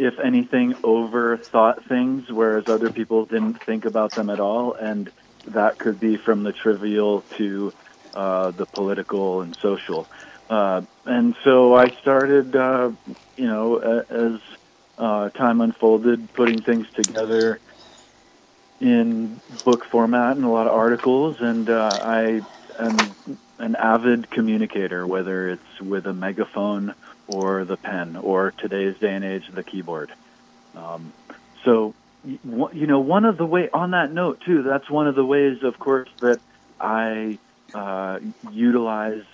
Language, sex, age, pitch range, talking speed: English, male, 40-59, 105-125 Hz, 145 wpm